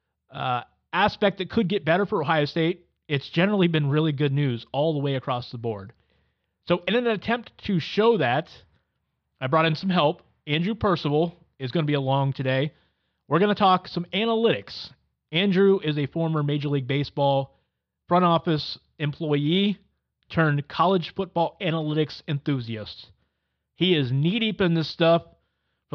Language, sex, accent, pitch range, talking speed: English, male, American, 135-175 Hz, 160 wpm